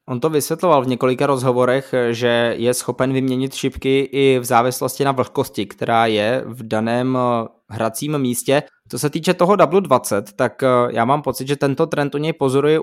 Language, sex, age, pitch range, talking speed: Czech, male, 20-39, 125-145 Hz, 175 wpm